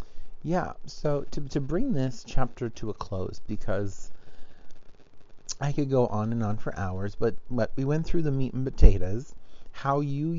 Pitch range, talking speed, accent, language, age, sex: 105-135 Hz, 175 wpm, American, English, 30-49, male